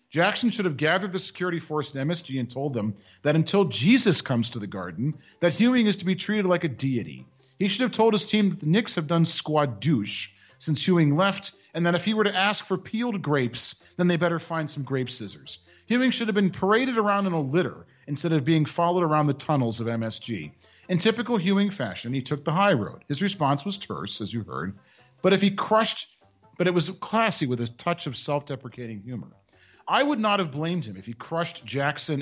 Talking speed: 225 wpm